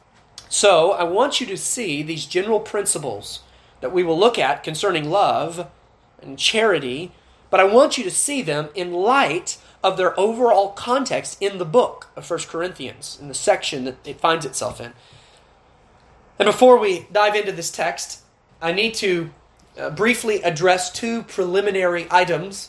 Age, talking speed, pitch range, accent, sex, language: 30-49, 160 wpm, 155-210 Hz, American, male, English